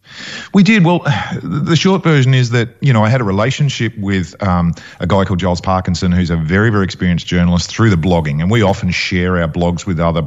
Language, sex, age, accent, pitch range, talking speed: English, male, 40-59, Australian, 85-115 Hz, 220 wpm